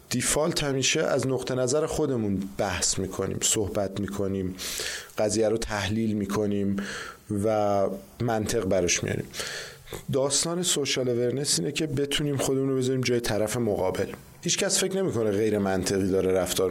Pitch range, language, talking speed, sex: 110-140 Hz, Persian, 130 wpm, male